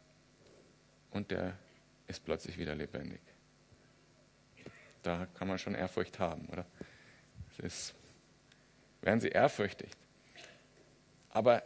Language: German